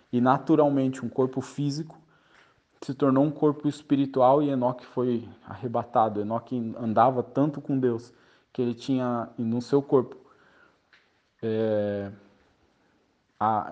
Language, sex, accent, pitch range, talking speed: Portuguese, male, Brazilian, 120-135 Hz, 120 wpm